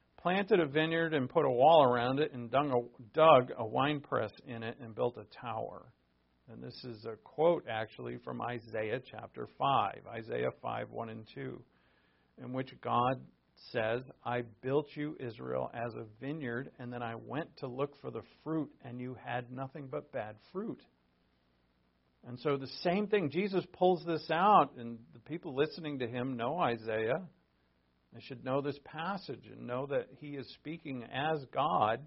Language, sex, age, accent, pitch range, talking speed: English, male, 50-69, American, 115-150 Hz, 170 wpm